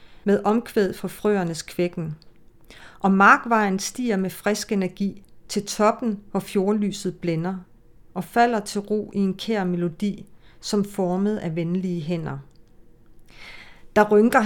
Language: Danish